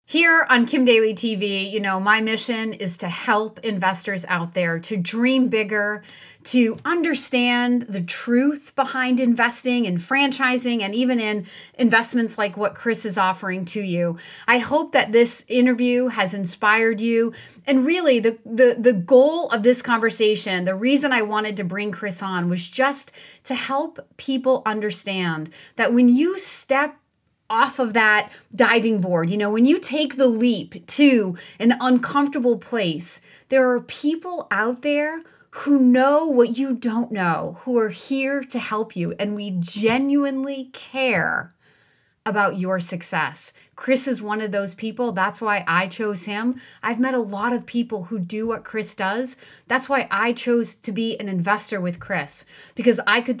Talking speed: 165 wpm